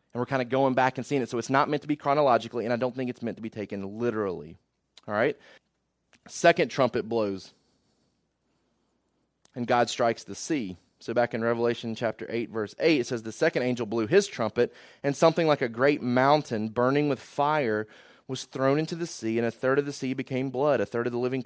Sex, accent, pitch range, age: male, American, 115-145 Hz, 30-49